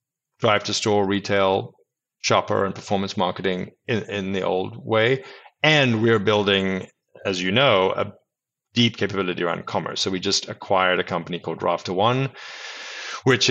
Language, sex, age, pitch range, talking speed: English, male, 30-49, 95-120 Hz, 140 wpm